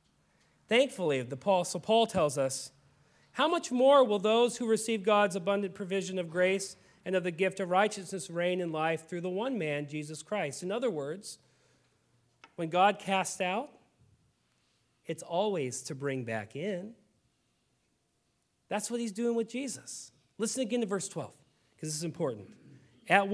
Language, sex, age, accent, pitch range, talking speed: English, male, 40-59, American, 170-230 Hz, 160 wpm